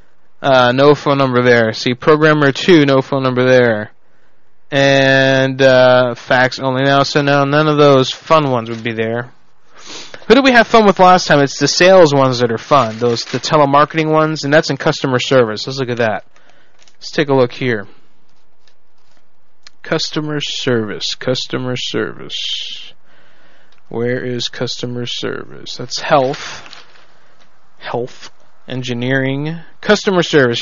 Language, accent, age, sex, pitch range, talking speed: English, American, 20-39, male, 125-165 Hz, 145 wpm